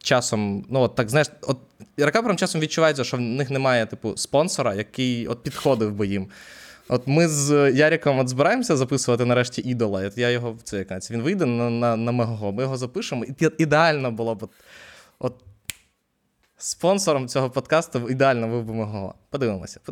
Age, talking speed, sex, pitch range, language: 20-39, 165 wpm, male, 115-145 Hz, Ukrainian